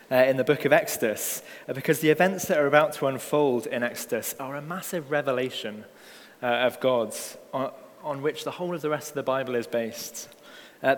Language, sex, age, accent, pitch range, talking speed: English, male, 20-39, British, 120-150 Hz, 210 wpm